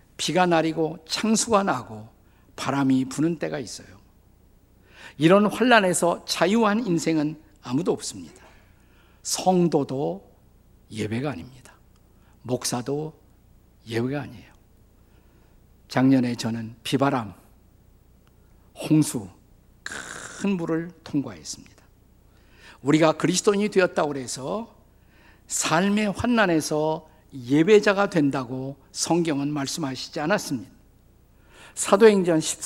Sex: male